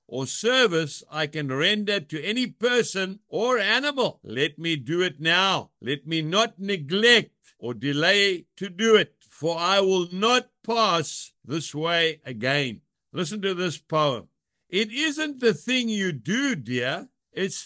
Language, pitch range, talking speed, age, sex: English, 155-220 Hz, 150 wpm, 60-79, male